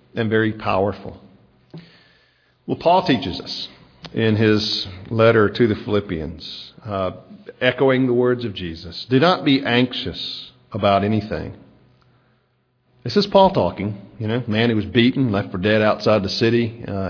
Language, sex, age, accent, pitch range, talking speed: English, male, 50-69, American, 95-135 Hz, 145 wpm